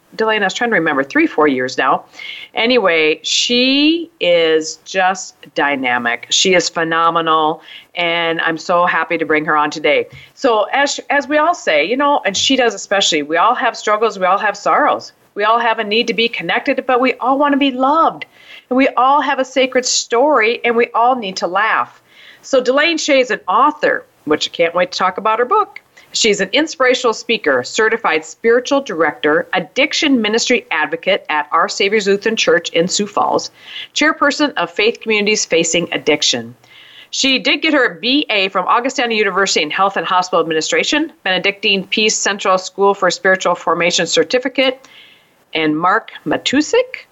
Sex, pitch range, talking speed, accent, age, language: female, 175-260 Hz, 175 wpm, American, 40-59, English